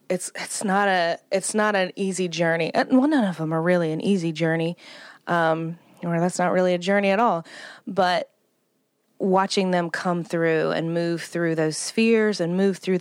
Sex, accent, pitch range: female, American, 165-195 Hz